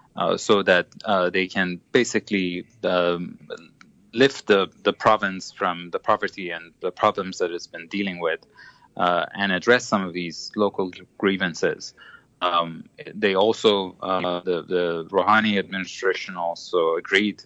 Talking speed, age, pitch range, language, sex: 140 wpm, 30-49, 90-115 Hz, English, male